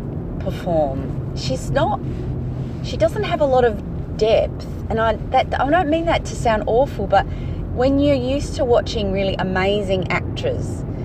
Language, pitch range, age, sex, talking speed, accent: English, 135-200 Hz, 30-49, female, 155 wpm, Australian